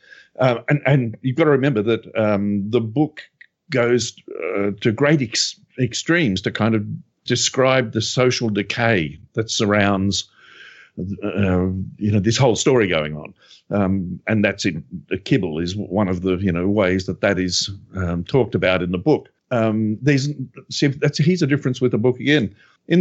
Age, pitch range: 50-69, 105-150 Hz